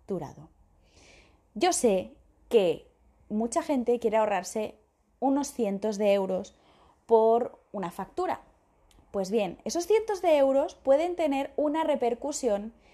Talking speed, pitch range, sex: 110 wpm, 200-280 Hz, female